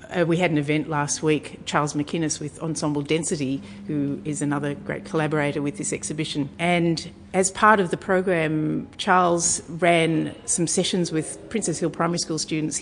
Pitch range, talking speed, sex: 145-175 Hz, 170 wpm, female